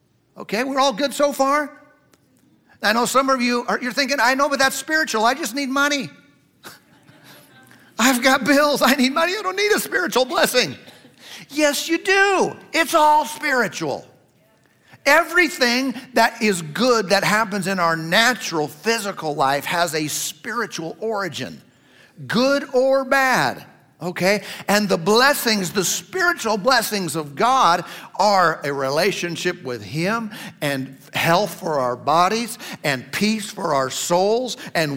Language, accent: English, American